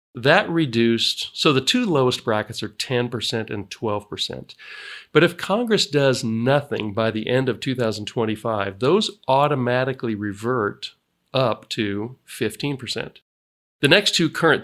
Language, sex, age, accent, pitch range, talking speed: English, male, 40-59, American, 110-135 Hz, 125 wpm